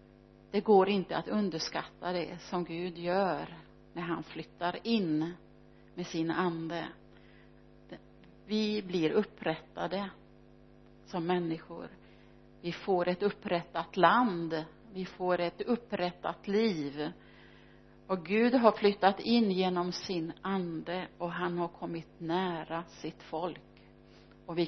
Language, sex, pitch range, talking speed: Swedish, female, 150-205 Hz, 115 wpm